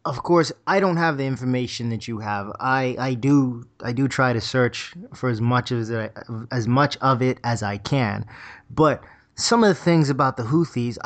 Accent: American